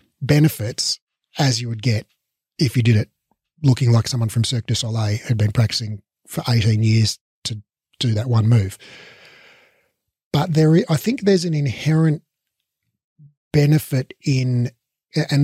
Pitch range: 110-135 Hz